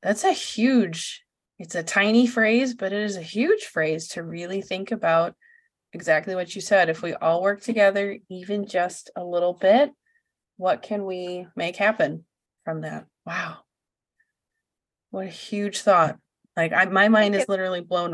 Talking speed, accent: 165 wpm, American